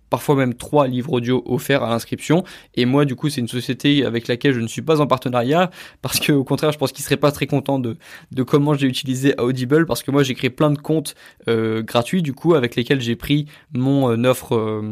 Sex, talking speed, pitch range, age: male, 240 wpm, 120-145 Hz, 20-39